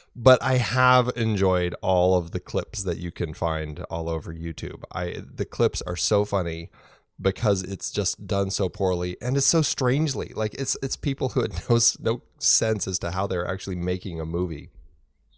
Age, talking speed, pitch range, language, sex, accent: 20-39, 185 wpm, 85-110 Hz, English, male, American